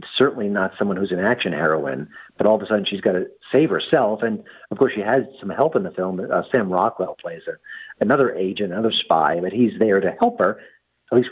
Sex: male